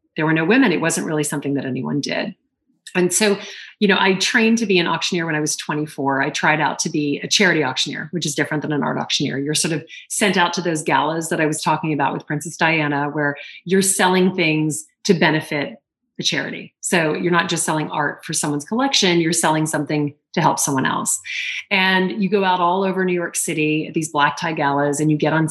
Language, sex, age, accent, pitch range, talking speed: English, female, 30-49, American, 155-200 Hz, 230 wpm